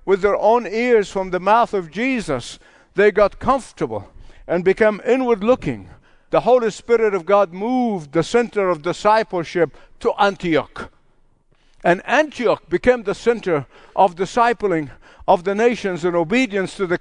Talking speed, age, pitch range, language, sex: 145 wpm, 50-69, 180-235 Hz, English, male